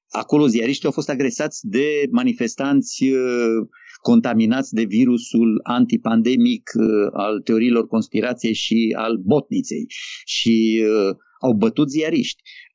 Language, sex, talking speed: Romanian, male, 115 wpm